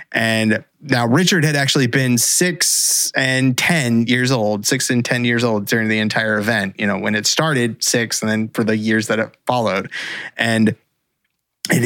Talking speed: 180 wpm